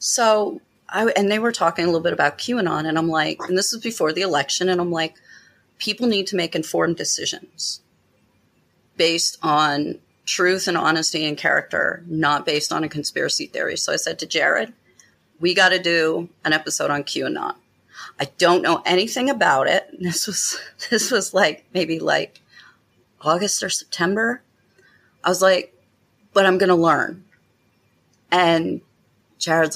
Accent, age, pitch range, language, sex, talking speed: American, 30-49, 155-185 Hz, English, female, 165 wpm